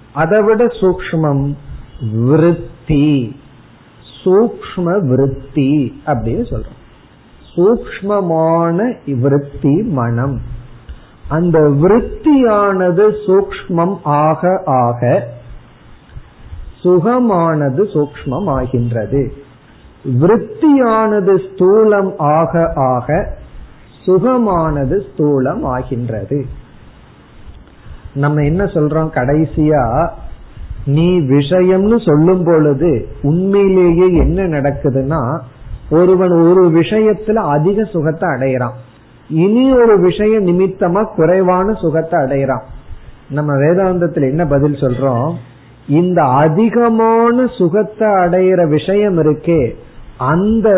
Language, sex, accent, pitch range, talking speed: Tamil, male, native, 135-185 Hz, 70 wpm